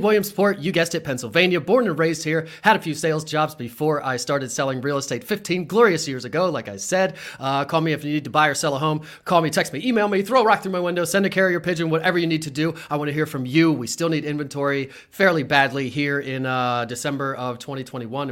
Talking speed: 255 wpm